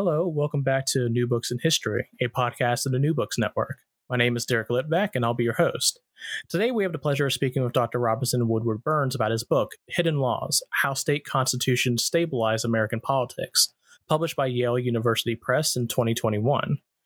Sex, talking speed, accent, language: male, 195 wpm, American, English